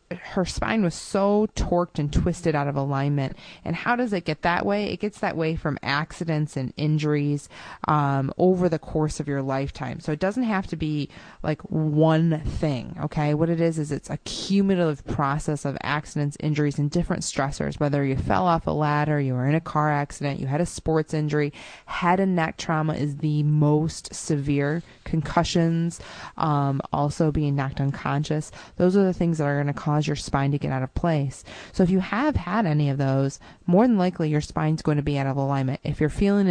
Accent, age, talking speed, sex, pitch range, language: American, 20-39, 205 wpm, female, 145-170 Hz, English